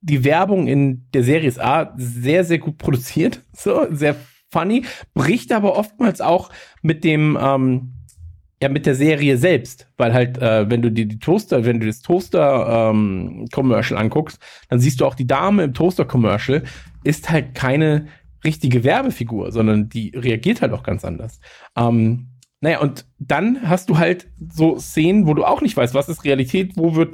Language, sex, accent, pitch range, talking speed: German, male, German, 120-165 Hz, 175 wpm